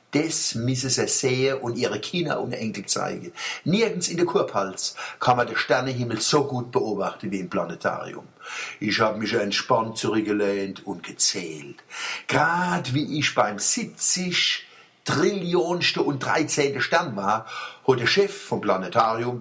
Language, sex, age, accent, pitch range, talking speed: German, male, 60-79, German, 120-165 Hz, 140 wpm